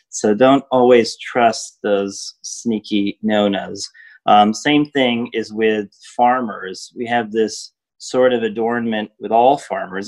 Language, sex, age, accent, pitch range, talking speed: English, male, 30-49, American, 105-135 Hz, 130 wpm